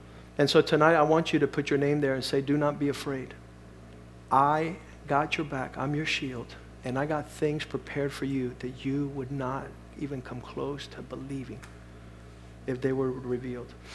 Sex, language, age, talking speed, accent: male, English, 50-69, 190 wpm, American